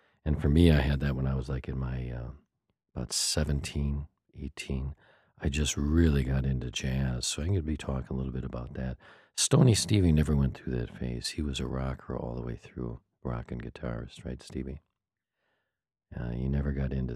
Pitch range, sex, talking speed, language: 65-100 Hz, male, 205 wpm, English